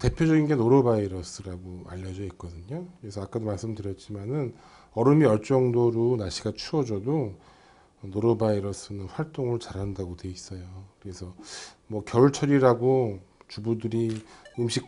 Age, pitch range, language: 40-59, 95-125 Hz, Korean